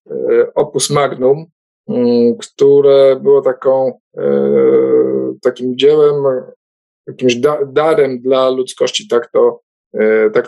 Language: Polish